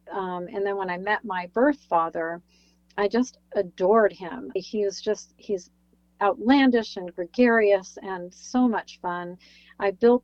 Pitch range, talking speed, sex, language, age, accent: 180-230 Hz, 150 wpm, female, English, 40-59, American